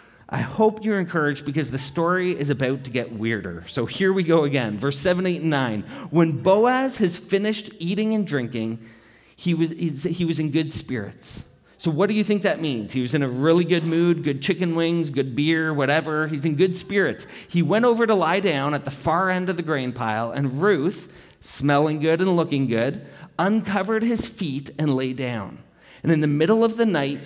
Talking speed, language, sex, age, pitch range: 205 wpm, English, male, 30-49, 130-180 Hz